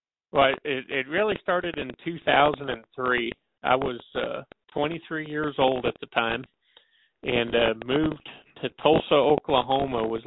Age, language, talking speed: 40-59, English, 135 wpm